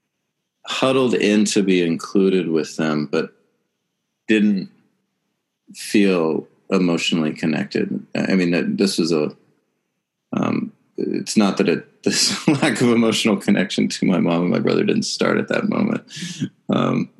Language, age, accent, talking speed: English, 30-49, American, 135 wpm